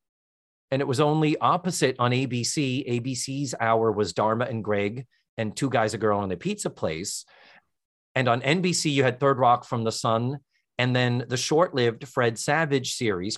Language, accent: English, American